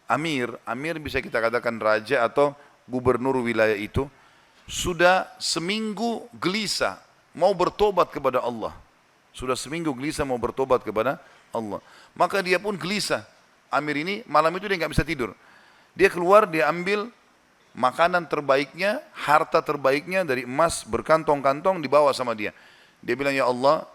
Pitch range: 130-175 Hz